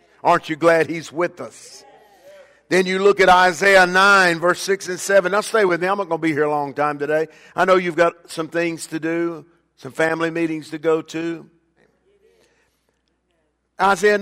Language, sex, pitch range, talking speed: English, male, 160-210 Hz, 190 wpm